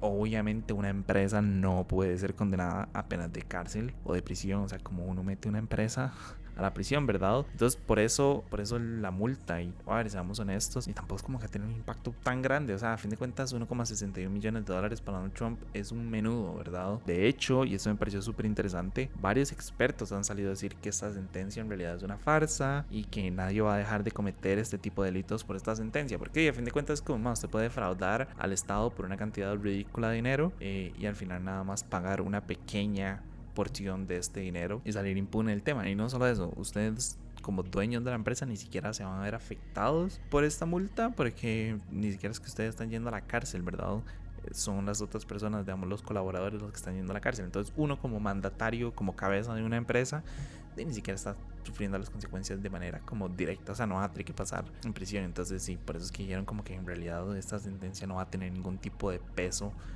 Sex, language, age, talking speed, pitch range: male, Spanish, 20-39, 235 wpm, 95-115 Hz